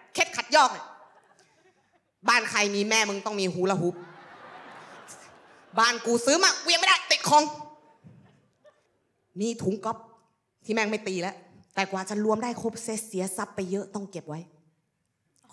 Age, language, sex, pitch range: 20-39, Thai, female, 170-225 Hz